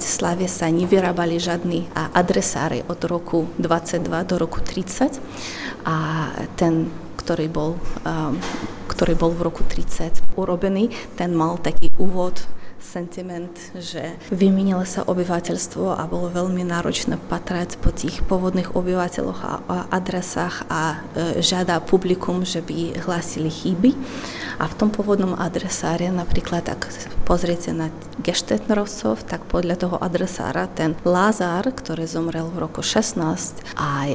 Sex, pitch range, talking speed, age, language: female, 160-180 Hz, 130 wpm, 20-39, Slovak